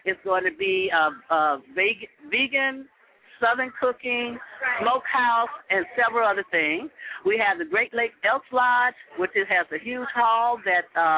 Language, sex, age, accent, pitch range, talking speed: English, female, 50-69, American, 185-245 Hz, 150 wpm